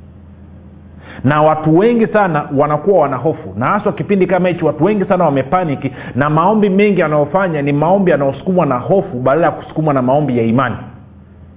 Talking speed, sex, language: 165 wpm, male, Swahili